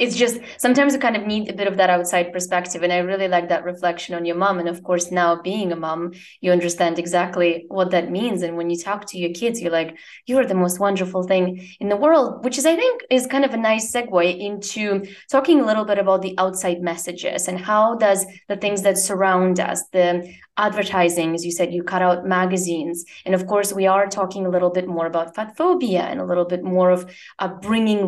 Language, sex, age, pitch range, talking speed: English, female, 20-39, 175-215 Hz, 235 wpm